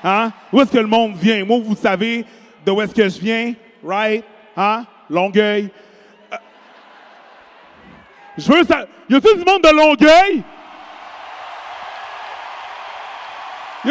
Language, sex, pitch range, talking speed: French, male, 225-320 Hz, 135 wpm